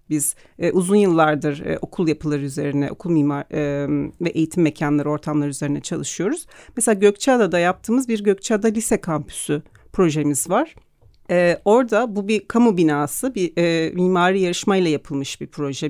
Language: Turkish